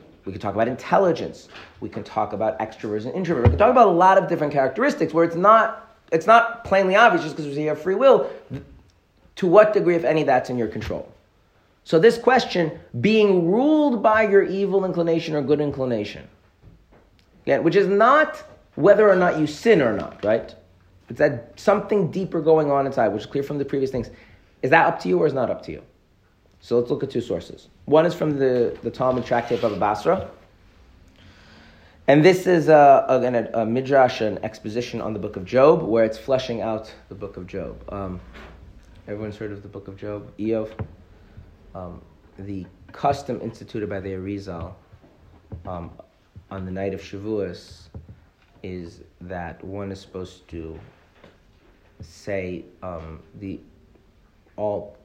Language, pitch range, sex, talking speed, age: English, 95-155 Hz, male, 175 wpm, 40-59